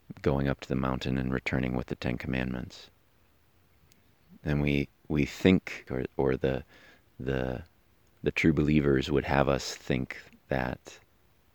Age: 30-49